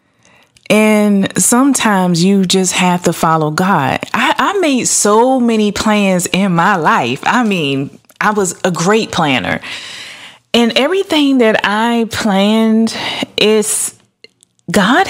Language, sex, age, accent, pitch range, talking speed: English, female, 20-39, American, 185-250 Hz, 125 wpm